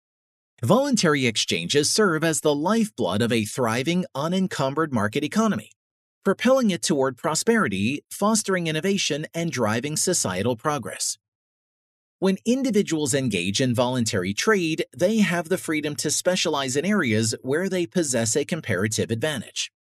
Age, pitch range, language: 40-59, 125-185 Hz, English